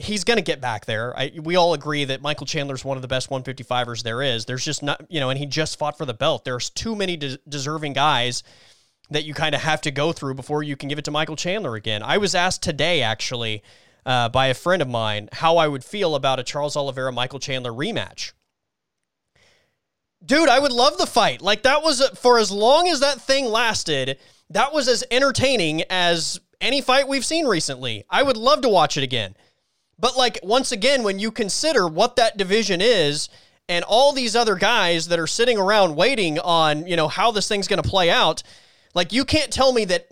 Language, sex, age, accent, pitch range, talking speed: English, male, 20-39, American, 140-225 Hz, 220 wpm